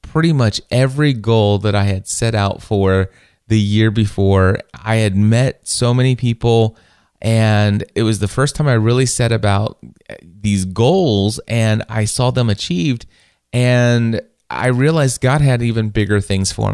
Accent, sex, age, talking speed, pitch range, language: American, male, 30-49, 160 wpm, 100-125 Hz, English